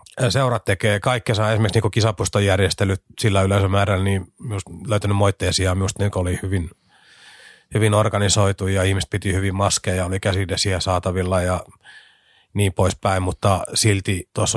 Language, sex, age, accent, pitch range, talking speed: Finnish, male, 30-49, native, 95-110 Hz, 140 wpm